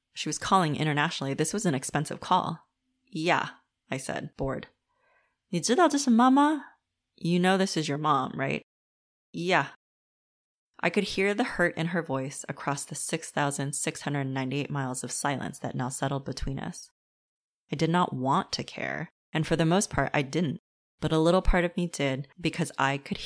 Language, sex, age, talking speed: English, female, 30-49, 165 wpm